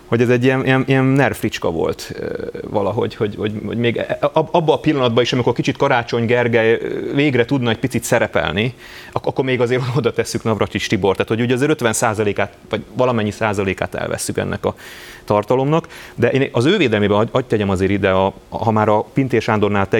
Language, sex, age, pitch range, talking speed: Hungarian, male, 30-49, 105-125 Hz, 185 wpm